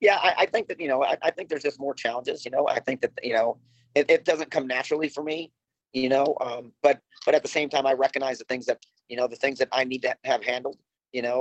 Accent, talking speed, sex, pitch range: American, 285 wpm, male, 125-165 Hz